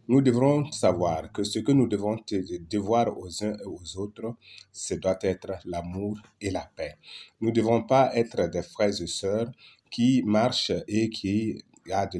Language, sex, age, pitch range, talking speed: French, male, 30-49, 90-110 Hz, 175 wpm